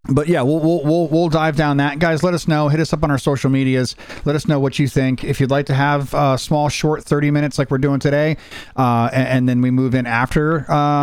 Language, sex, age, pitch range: English, male, 40-59, 120-150 Hz